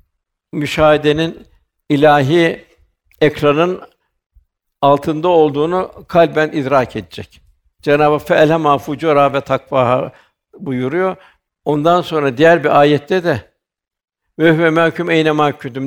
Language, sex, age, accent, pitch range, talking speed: Turkish, male, 60-79, native, 125-160 Hz, 85 wpm